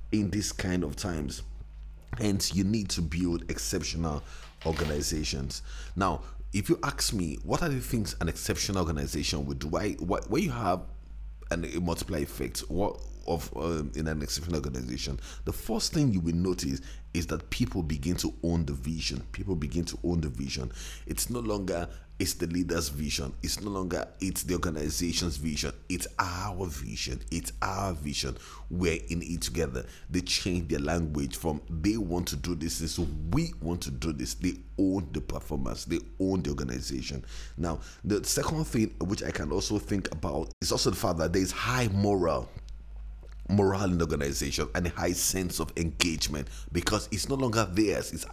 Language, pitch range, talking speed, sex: English, 75-95 Hz, 180 wpm, male